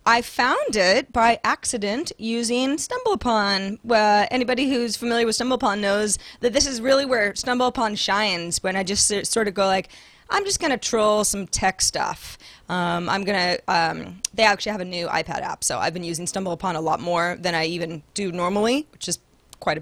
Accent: American